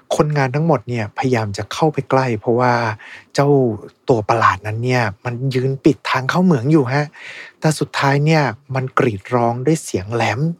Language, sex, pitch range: Thai, male, 105-145 Hz